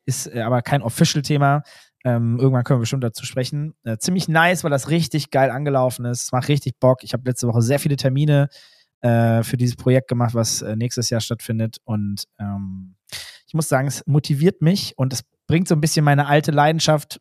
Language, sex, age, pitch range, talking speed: German, male, 20-39, 120-155 Hz, 200 wpm